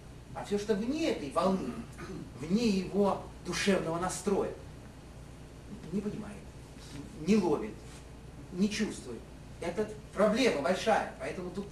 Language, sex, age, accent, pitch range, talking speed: Russian, male, 30-49, native, 155-215 Hz, 110 wpm